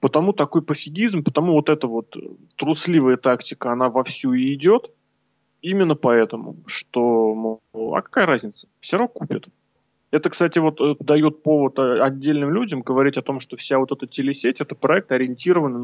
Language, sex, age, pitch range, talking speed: Russian, male, 20-39, 130-160 Hz, 150 wpm